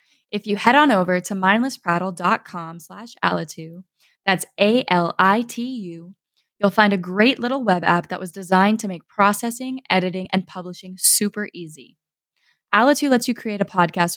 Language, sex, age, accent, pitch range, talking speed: English, female, 10-29, American, 185-230 Hz, 145 wpm